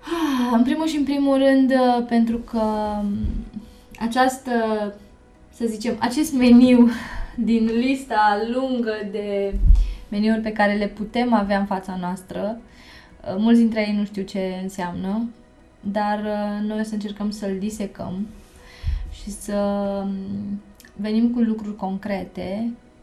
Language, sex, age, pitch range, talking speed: Romanian, female, 20-39, 195-215 Hz, 120 wpm